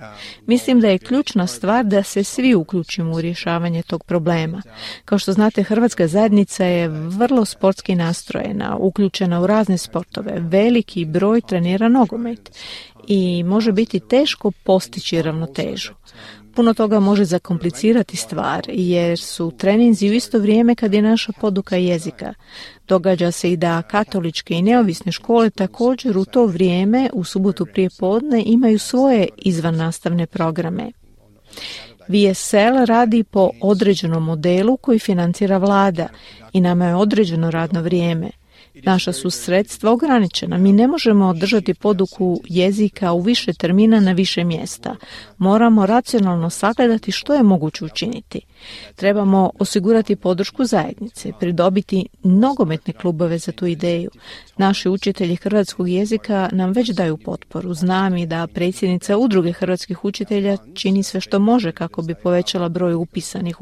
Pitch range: 175-220 Hz